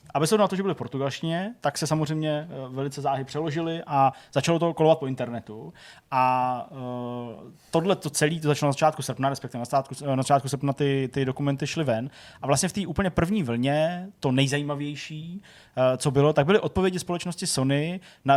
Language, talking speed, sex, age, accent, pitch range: Czech, 185 wpm, male, 20-39, native, 130-160 Hz